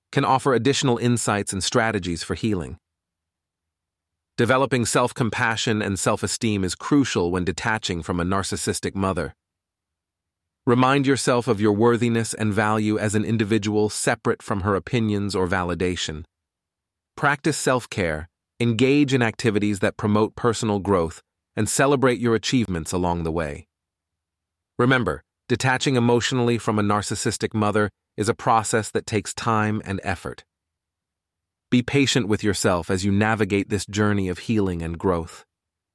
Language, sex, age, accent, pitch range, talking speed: English, male, 30-49, American, 90-120 Hz, 135 wpm